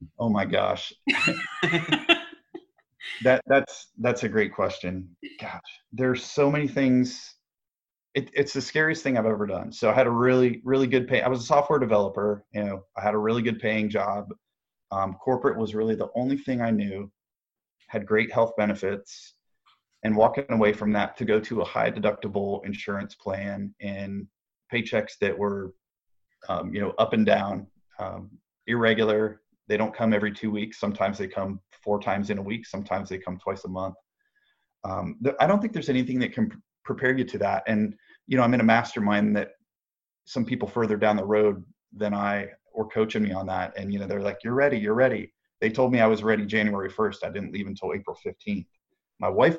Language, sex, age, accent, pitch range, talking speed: English, male, 30-49, American, 100-130 Hz, 195 wpm